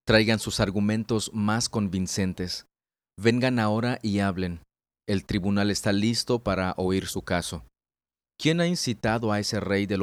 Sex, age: male, 40-59